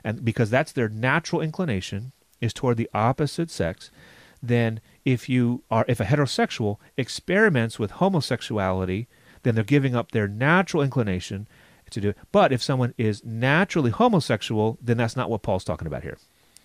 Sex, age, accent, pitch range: male, 30-49, American, 110-150 Hz